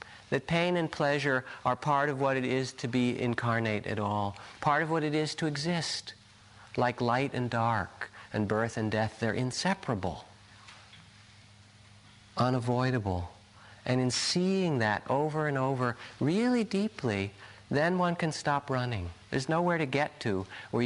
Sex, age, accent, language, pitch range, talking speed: male, 50-69, American, English, 105-145 Hz, 150 wpm